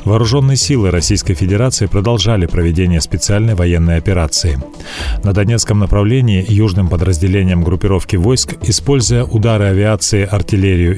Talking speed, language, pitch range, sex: 110 wpm, Russian, 95-120 Hz, male